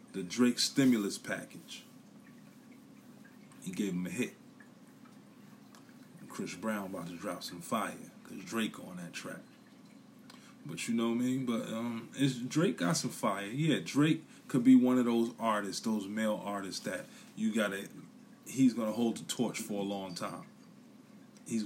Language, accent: English, American